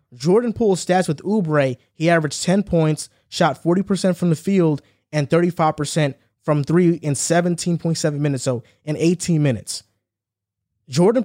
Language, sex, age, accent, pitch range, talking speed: English, male, 20-39, American, 135-170 Hz, 140 wpm